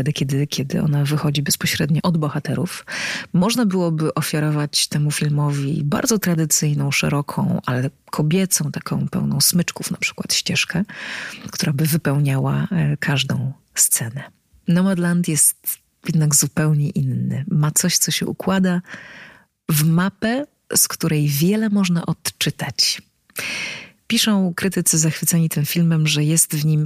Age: 30-49